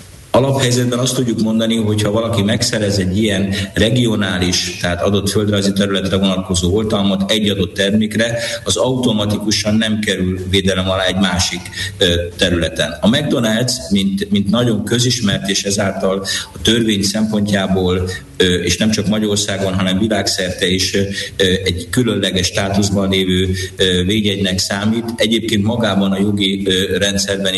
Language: Hungarian